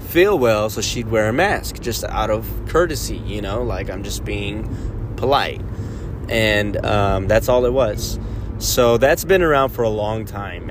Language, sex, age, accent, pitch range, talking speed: English, male, 20-39, American, 105-125 Hz, 180 wpm